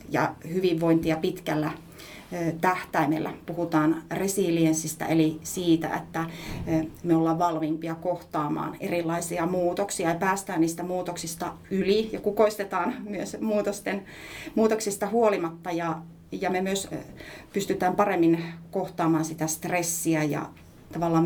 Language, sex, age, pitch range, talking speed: Finnish, female, 30-49, 165-190 Hz, 105 wpm